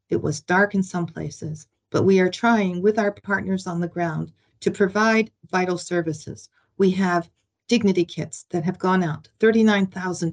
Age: 40-59